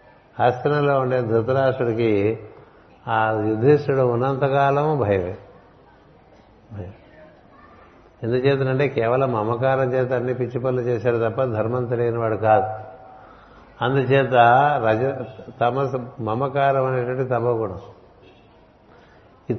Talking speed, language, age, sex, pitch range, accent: 80 wpm, Telugu, 60-79, male, 110-130 Hz, native